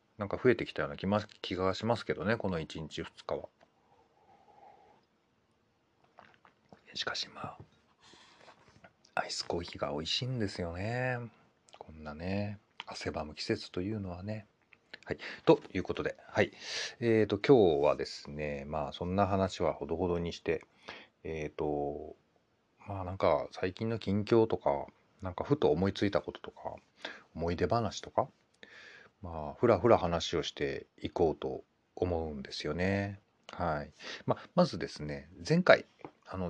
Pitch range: 80-115 Hz